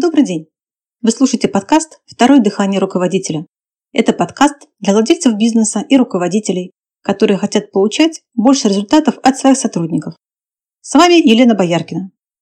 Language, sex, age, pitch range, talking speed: Russian, female, 30-49, 190-260 Hz, 130 wpm